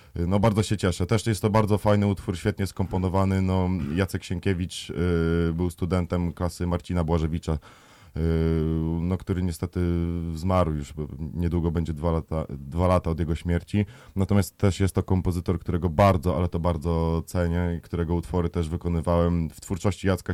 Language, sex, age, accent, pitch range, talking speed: Polish, male, 20-39, native, 80-95 Hz, 160 wpm